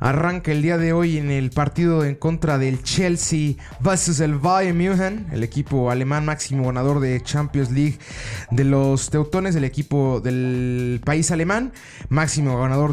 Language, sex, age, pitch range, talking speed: Spanish, male, 30-49, 130-165 Hz, 160 wpm